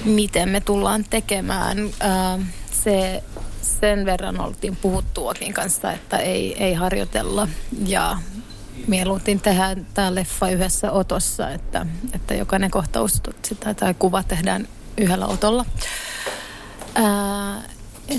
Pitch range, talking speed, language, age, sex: 170-215 Hz, 110 wpm, Finnish, 30-49, female